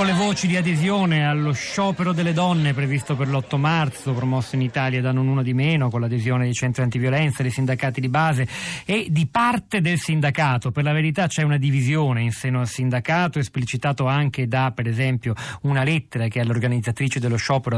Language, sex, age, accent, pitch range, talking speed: Italian, male, 40-59, native, 125-150 Hz, 190 wpm